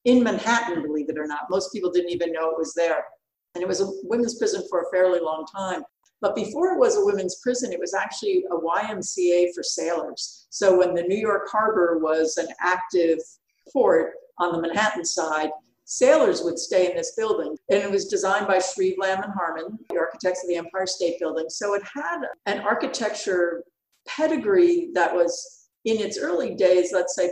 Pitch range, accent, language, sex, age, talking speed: 175-250 Hz, American, English, female, 50-69, 195 wpm